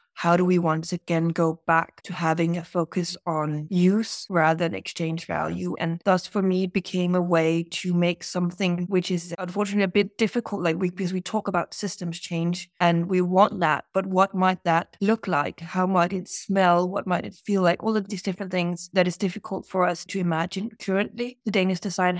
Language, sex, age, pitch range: Chinese, female, 20-39, 170-195 Hz